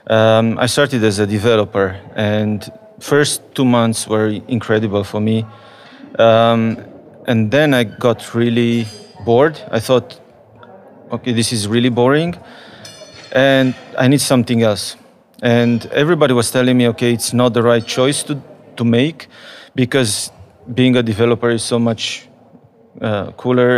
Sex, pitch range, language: male, 115-130 Hz, Romanian